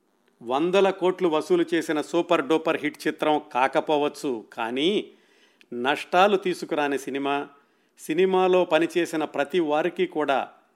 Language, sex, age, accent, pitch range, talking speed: Telugu, male, 50-69, native, 145-185 Hz, 100 wpm